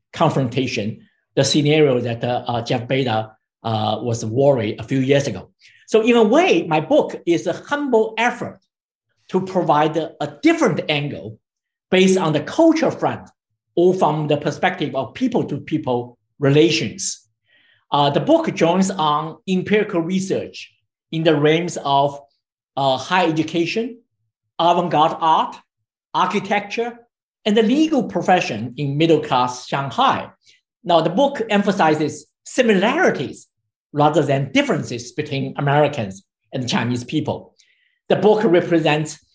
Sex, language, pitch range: male, English, 120-185 Hz